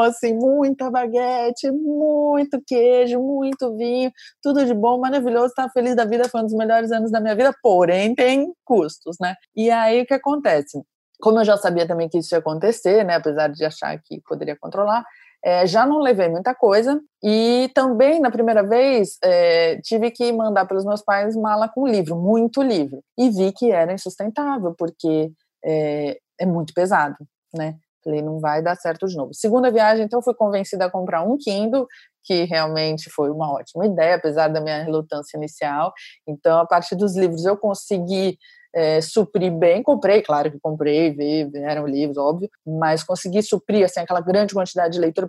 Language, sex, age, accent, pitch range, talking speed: Portuguese, female, 20-39, Brazilian, 165-240 Hz, 175 wpm